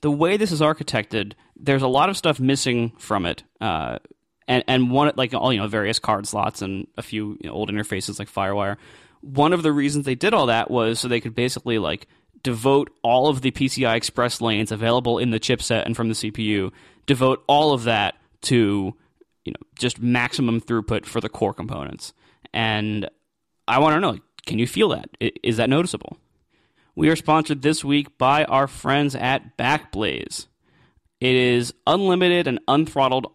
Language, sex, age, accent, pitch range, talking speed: English, male, 20-39, American, 110-145 Hz, 180 wpm